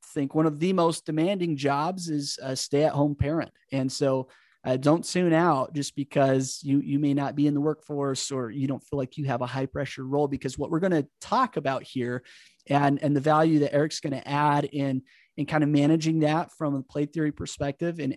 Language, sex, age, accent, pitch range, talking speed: English, male, 30-49, American, 135-165 Hz, 220 wpm